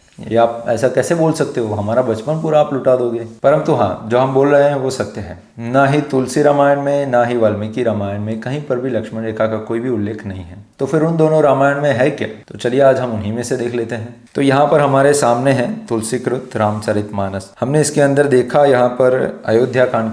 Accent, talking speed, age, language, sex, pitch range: native, 230 wpm, 30-49, Hindi, male, 110-140 Hz